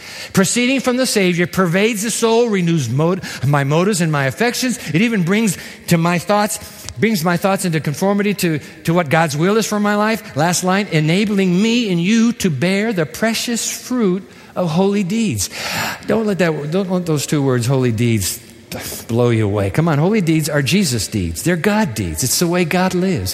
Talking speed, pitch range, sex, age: 200 wpm, 150-210 Hz, male, 50-69